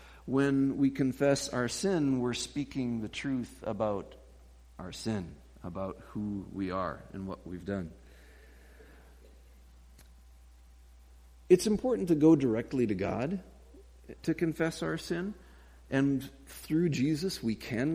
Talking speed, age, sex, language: 120 wpm, 50-69, male, English